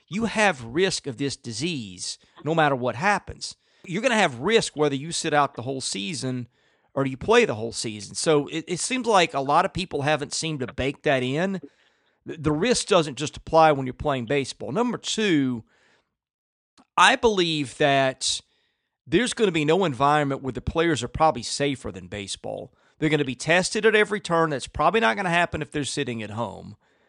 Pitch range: 135-175 Hz